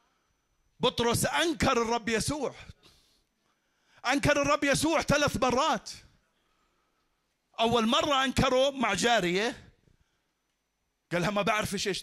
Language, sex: Arabic, male